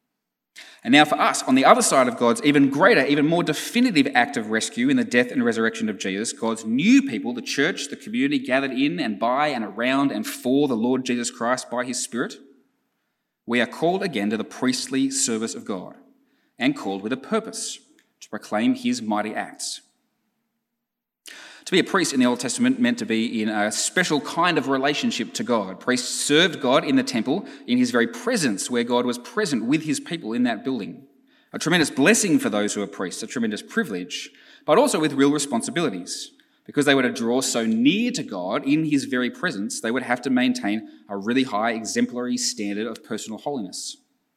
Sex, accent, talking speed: male, Australian, 200 wpm